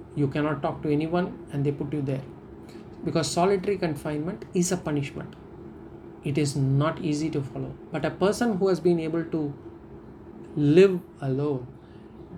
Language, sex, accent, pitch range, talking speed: English, male, Indian, 145-180 Hz, 155 wpm